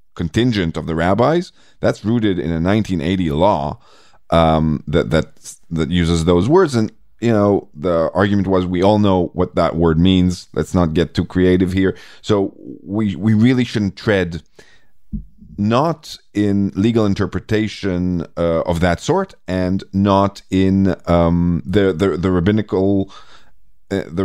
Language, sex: English, male